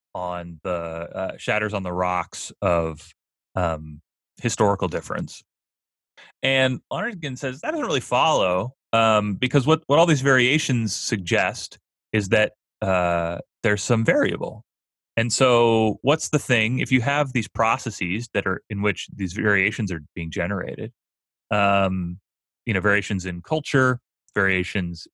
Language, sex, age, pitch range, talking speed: English, male, 30-49, 85-110 Hz, 140 wpm